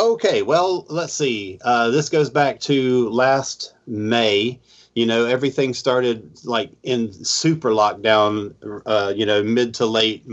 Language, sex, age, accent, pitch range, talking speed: English, male, 40-59, American, 110-140 Hz, 145 wpm